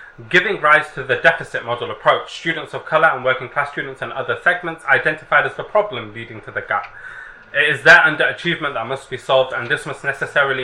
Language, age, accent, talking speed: English, 20-39, British, 210 wpm